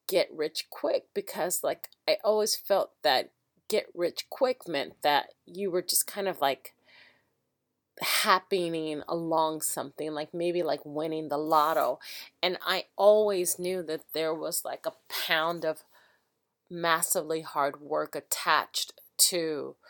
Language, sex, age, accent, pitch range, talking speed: English, female, 30-49, American, 155-185 Hz, 135 wpm